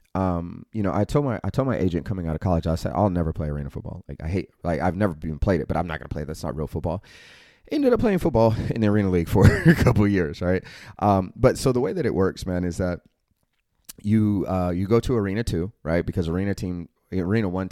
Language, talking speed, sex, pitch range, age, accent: English, 255 wpm, male, 80-100 Hz, 30-49, American